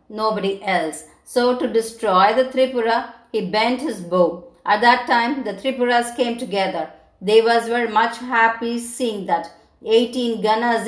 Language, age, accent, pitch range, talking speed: Tamil, 50-69, native, 210-250 Hz, 145 wpm